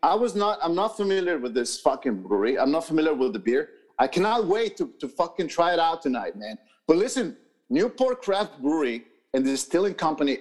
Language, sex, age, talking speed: English, male, 50-69, 210 wpm